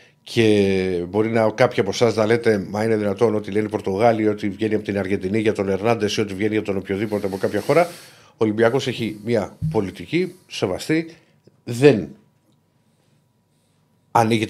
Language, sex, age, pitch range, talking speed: Greek, male, 60-79, 100-125 Hz, 155 wpm